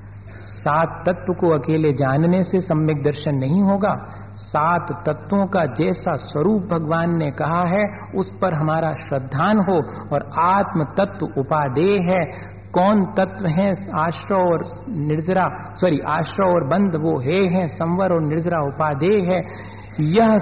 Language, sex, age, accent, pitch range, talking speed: Hindi, male, 50-69, native, 125-175 Hz, 130 wpm